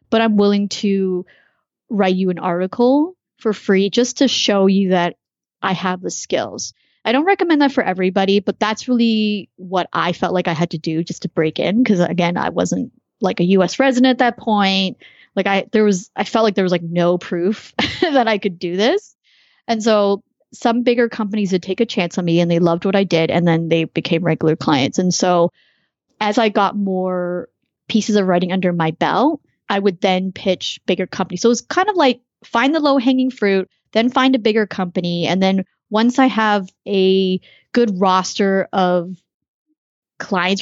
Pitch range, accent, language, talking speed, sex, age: 180-230 Hz, American, English, 195 wpm, female, 30-49